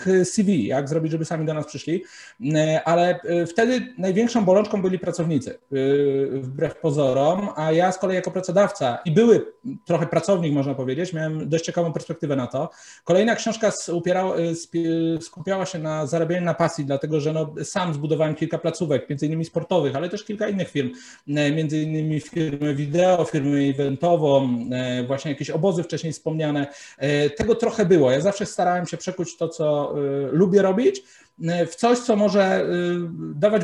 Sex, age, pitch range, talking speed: male, 40-59, 145-185 Hz, 155 wpm